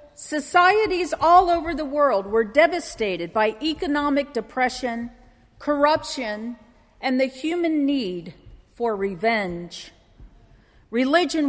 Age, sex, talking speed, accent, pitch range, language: 50-69, female, 95 wpm, American, 225-320 Hz, English